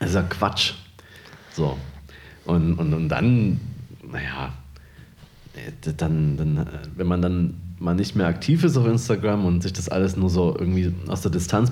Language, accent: German, German